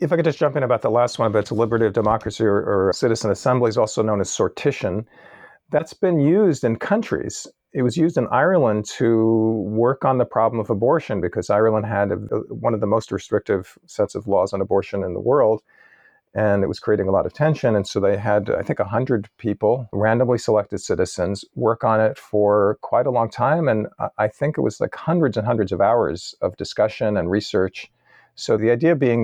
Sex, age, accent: male, 40-59, American